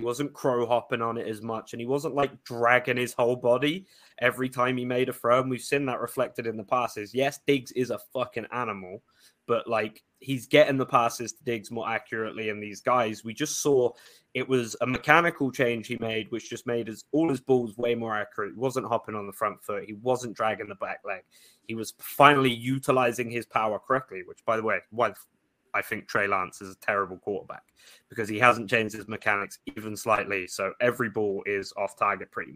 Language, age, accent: English, 20-39, British